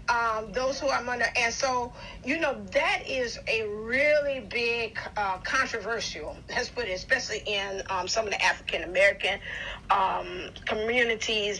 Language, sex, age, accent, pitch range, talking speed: English, female, 40-59, American, 205-245 Hz, 145 wpm